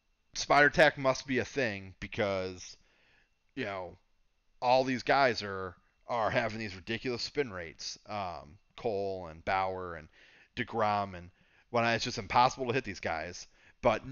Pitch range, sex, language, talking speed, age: 95-130 Hz, male, English, 155 wpm, 30-49